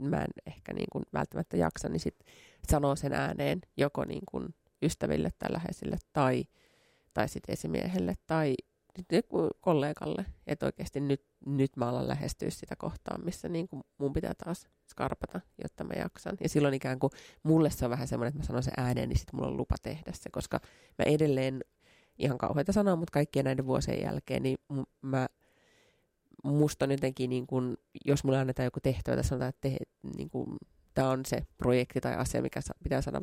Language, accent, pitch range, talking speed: Finnish, native, 130-150 Hz, 180 wpm